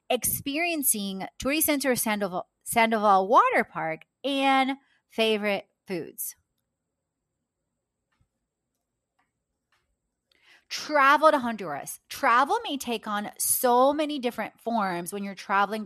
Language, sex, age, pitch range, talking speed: English, female, 30-49, 195-265 Hz, 90 wpm